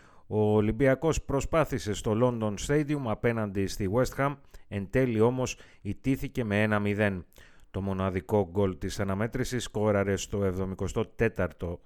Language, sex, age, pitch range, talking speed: Greek, male, 30-49, 100-130 Hz, 125 wpm